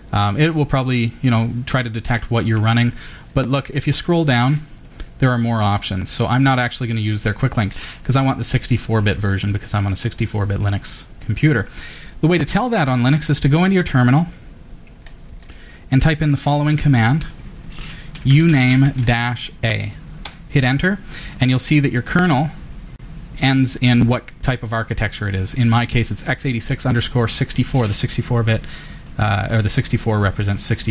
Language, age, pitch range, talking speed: English, 30-49, 105-135 Hz, 185 wpm